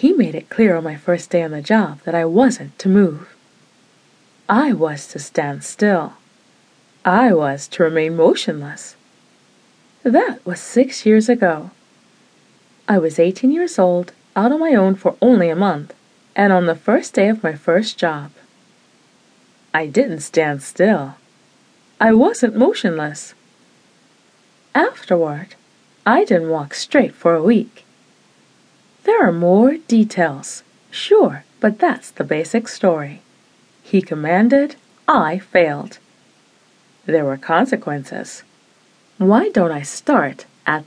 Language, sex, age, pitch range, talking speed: English, female, 30-49, 165-245 Hz, 130 wpm